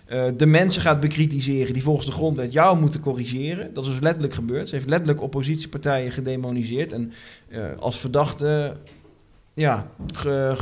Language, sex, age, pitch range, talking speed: Dutch, male, 20-39, 140-170 Hz, 165 wpm